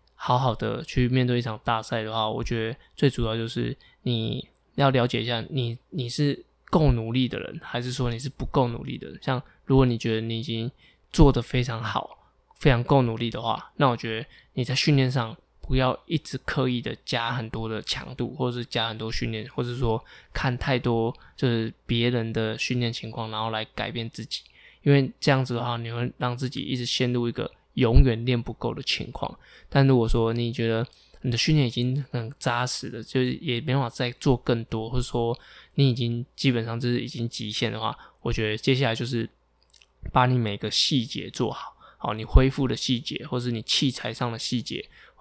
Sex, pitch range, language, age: male, 115-130 Hz, Chinese, 20-39